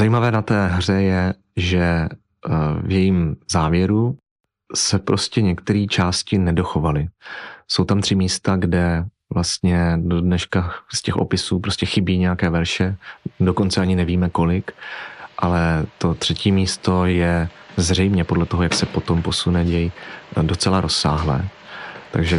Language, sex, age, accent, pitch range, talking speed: Czech, male, 30-49, native, 85-95 Hz, 130 wpm